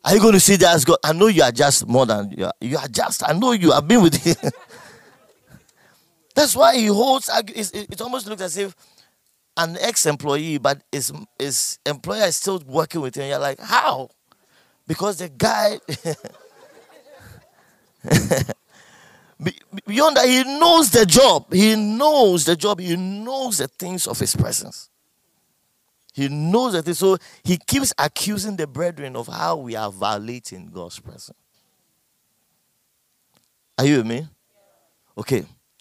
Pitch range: 135-210 Hz